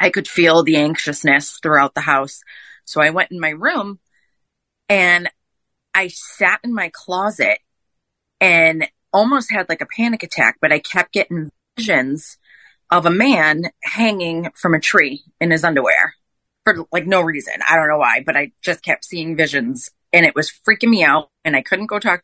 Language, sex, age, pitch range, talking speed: English, female, 30-49, 150-195 Hz, 180 wpm